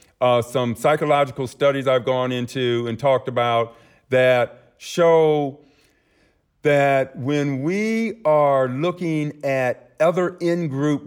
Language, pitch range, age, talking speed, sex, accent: English, 125-165 Hz, 50-69, 110 wpm, male, American